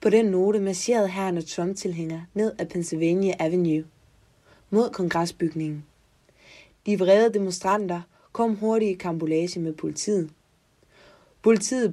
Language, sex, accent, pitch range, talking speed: Danish, female, native, 170-200 Hz, 115 wpm